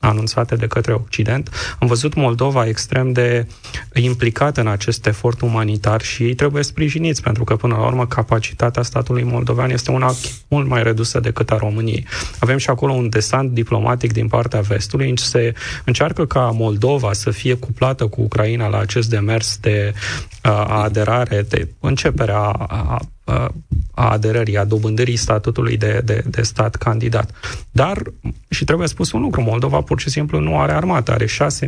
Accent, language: native, Romanian